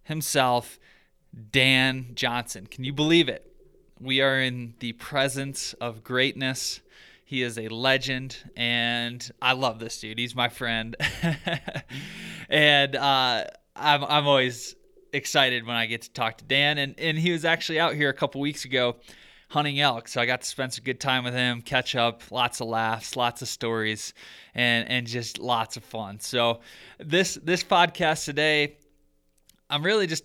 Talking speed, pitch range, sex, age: 165 wpm, 120-145 Hz, male, 20-39